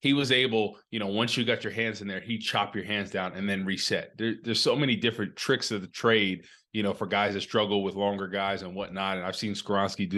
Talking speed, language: 260 wpm, English